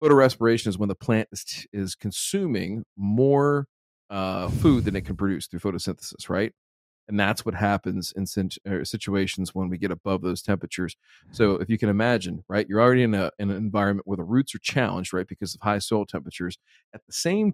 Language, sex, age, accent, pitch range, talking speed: English, male, 40-59, American, 95-110 Hz, 195 wpm